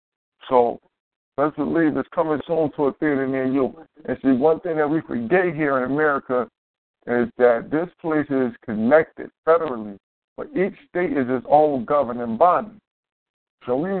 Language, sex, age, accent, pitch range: Japanese, male, 50-69, American, 115-145 Hz